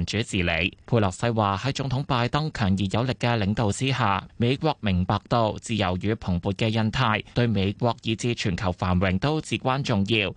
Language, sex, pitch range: Chinese, male, 100-140 Hz